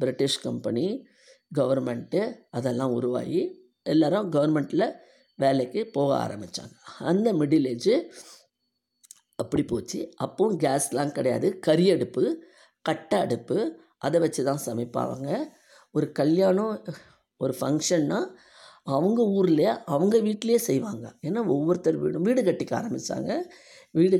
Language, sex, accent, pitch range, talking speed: Tamil, female, native, 135-215 Hz, 105 wpm